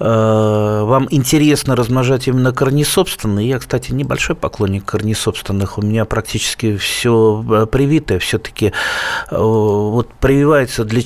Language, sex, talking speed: Russian, male, 115 wpm